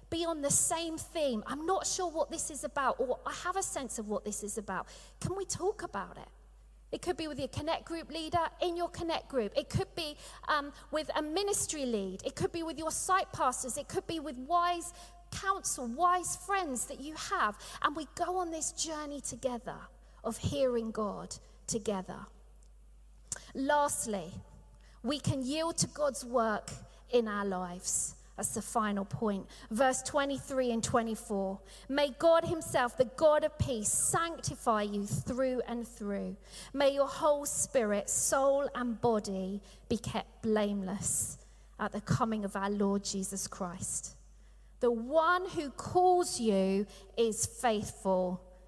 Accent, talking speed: British, 160 wpm